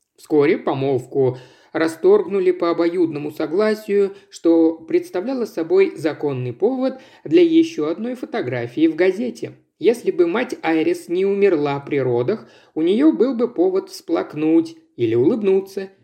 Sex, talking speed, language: male, 125 wpm, Russian